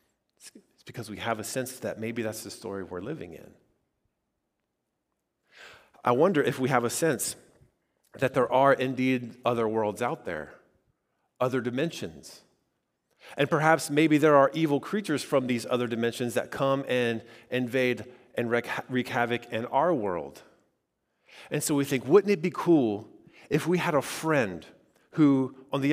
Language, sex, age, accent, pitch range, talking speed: English, male, 30-49, American, 115-145 Hz, 155 wpm